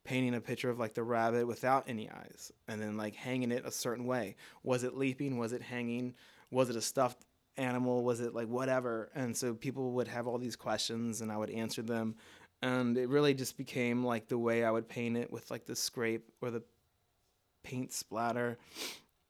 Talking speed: 205 wpm